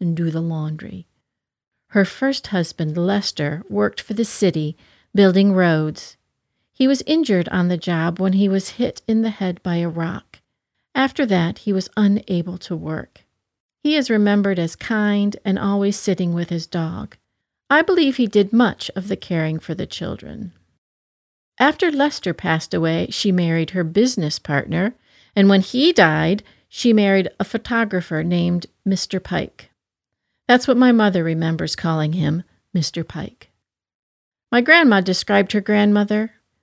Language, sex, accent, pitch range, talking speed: English, female, American, 170-230 Hz, 150 wpm